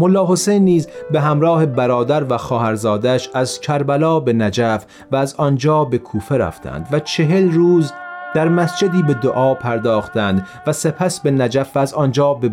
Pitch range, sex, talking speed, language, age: 115-155 Hz, male, 160 wpm, Persian, 40-59